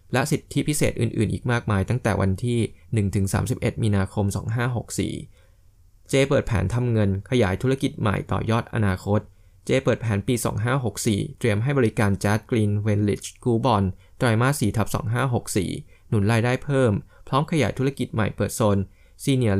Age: 20-39